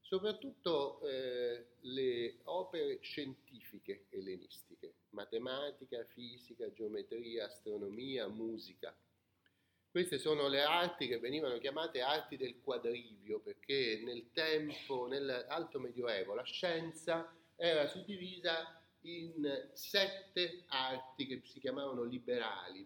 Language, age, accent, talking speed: Italian, 30-49, native, 95 wpm